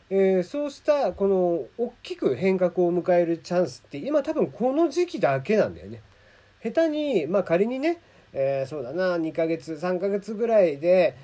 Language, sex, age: Japanese, male, 40-59